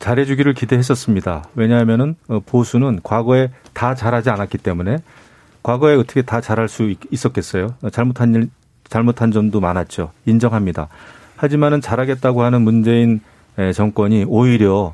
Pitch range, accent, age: 110-145 Hz, native, 40-59